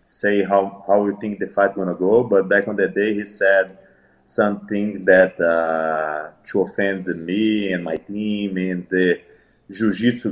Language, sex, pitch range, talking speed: English, male, 90-110 Hz, 170 wpm